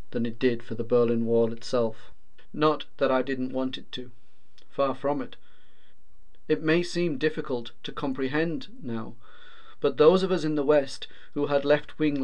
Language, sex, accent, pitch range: English, male, British, 120-150 Hz